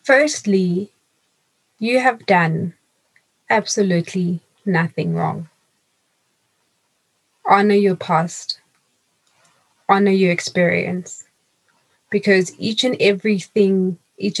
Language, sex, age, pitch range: English, female, 20-39, 170-195 Hz